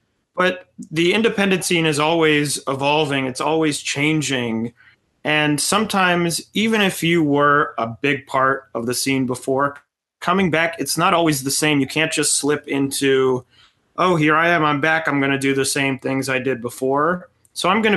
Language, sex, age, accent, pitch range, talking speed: English, male, 30-49, American, 135-160 Hz, 180 wpm